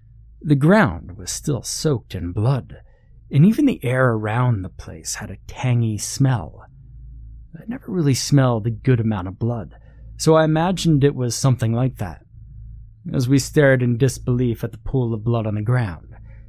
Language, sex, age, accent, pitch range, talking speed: English, male, 30-49, American, 105-130 Hz, 175 wpm